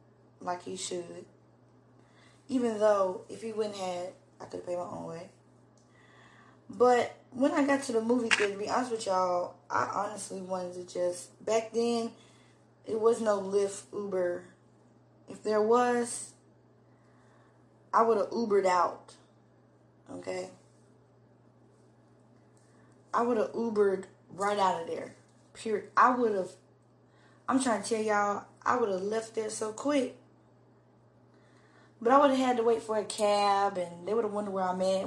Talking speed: 155 wpm